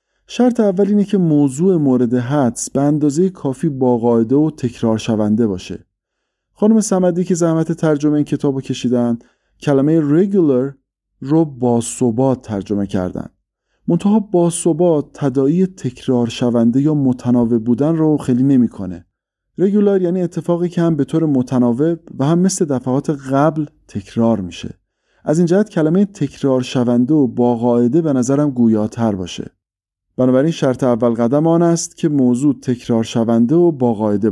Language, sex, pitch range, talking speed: English, male, 115-165 Hz, 145 wpm